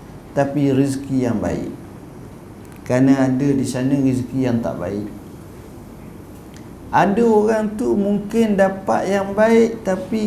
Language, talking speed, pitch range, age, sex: Malay, 115 wpm, 125-155 Hz, 50-69, male